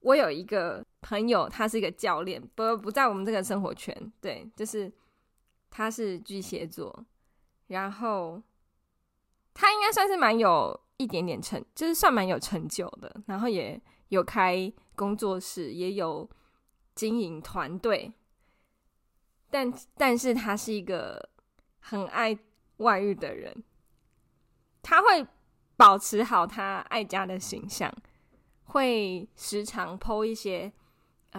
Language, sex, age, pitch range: Chinese, female, 20-39, 190-230 Hz